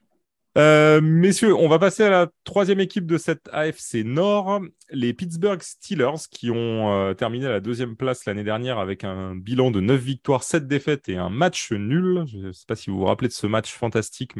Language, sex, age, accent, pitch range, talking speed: French, male, 30-49, French, 100-140 Hz, 210 wpm